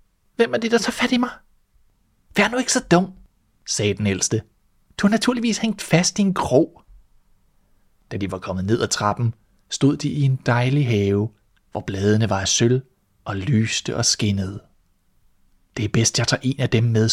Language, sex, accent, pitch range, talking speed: Danish, male, native, 100-130 Hz, 195 wpm